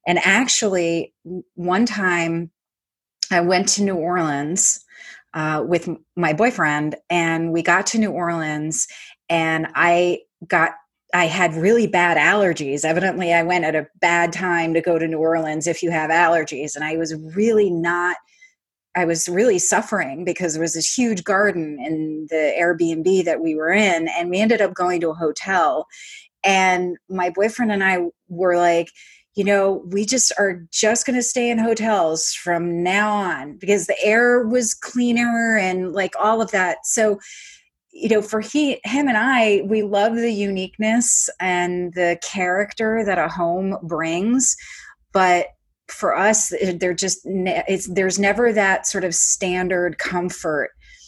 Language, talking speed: English, 160 wpm